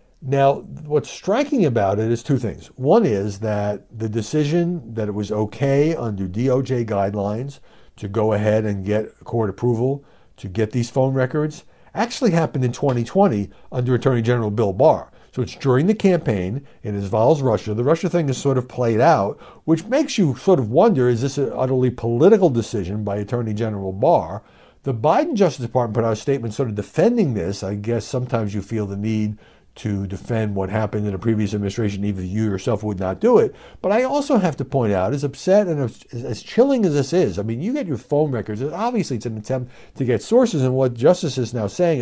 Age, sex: 60-79, male